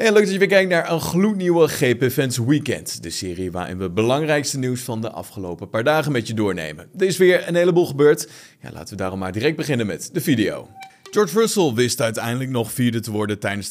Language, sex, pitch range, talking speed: Dutch, male, 105-150 Hz, 225 wpm